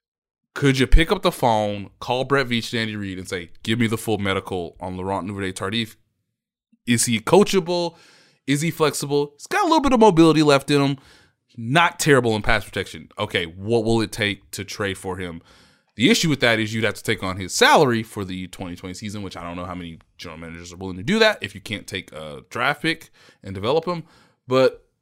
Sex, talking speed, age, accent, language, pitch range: male, 225 wpm, 20-39, American, English, 95-145 Hz